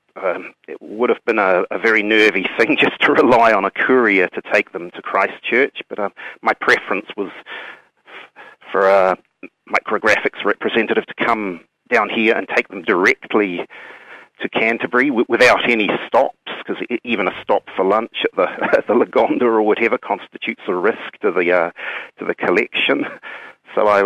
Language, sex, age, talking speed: English, male, 40-59, 170 wpm